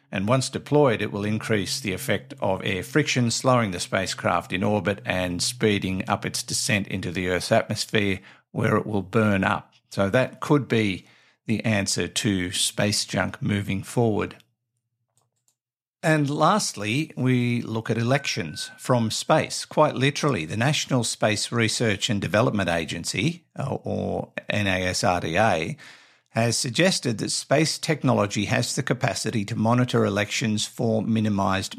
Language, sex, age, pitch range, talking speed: English, male, 50-69, 100-130 Hz, 140 wpm